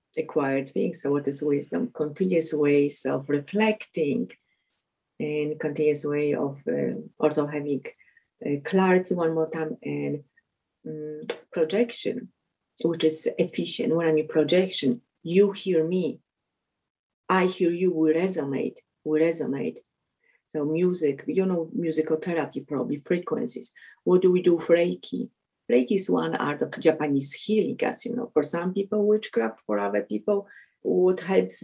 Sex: female